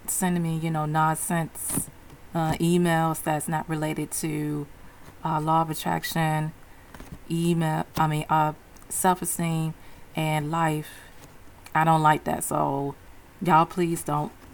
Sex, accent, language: female, American, English